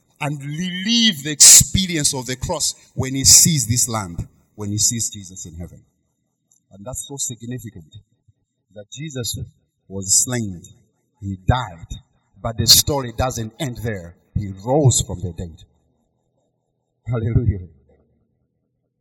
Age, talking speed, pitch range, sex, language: 50-69, 125 wpm, 100-135 Hz, male, English